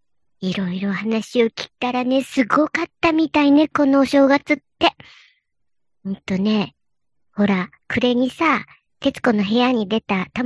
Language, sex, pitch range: Japanese, male, 210-280 Hz